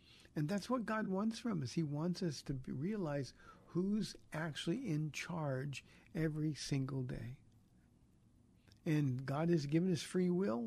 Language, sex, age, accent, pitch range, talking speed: English, male, 60-79, American, 135-170 Hz, 145 wpm